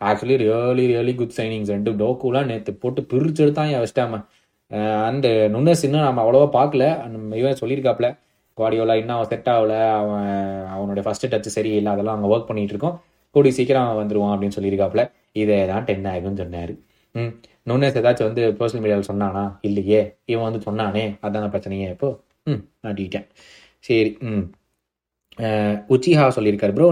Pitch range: 105-140 Hz